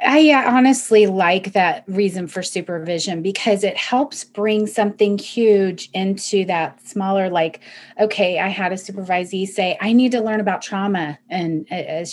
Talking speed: 160 wpm